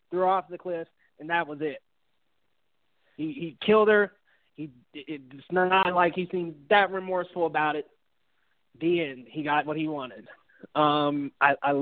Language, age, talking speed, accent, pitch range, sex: English, 20-39, 170 wpm, American, 150-185 Hz, male